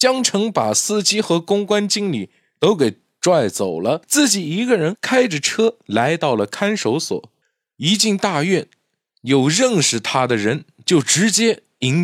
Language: Chinese